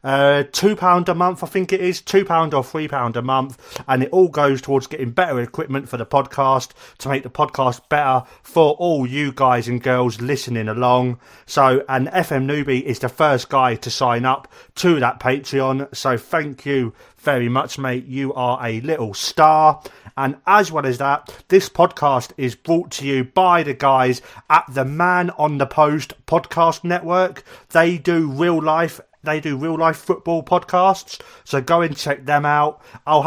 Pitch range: 130-165 Hz